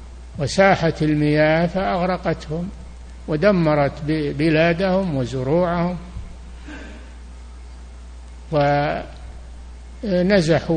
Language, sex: Arabic, male